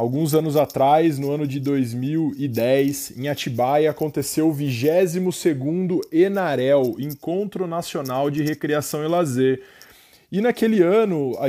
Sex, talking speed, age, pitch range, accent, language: male, 120 wpm, 20-39, 145-185 Hz, Brazilian, Portuguese